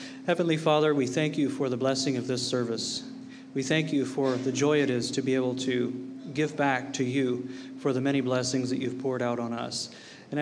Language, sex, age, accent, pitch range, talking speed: English, male, 40-59, American, 125-140 Hz, 220 wpm